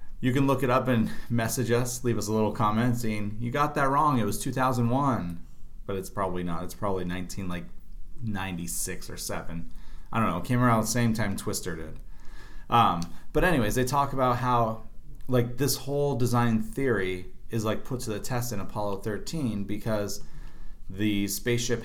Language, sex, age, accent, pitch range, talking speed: English, male, 30-49, American, 100-125 Hz, 190 wpm